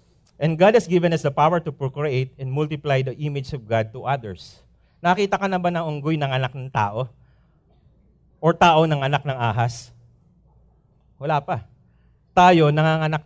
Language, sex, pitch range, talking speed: English, male, 120-150 Hz, 165 wpm